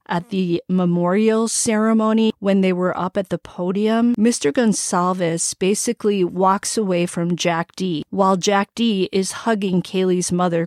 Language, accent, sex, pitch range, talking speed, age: English, American, female, 180-225 Hz, 145 wpm, 40-59